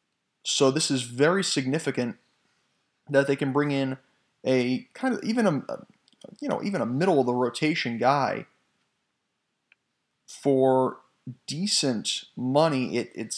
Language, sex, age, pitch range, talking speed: English, male, 30-49, 130-165 Hz, 130 wpm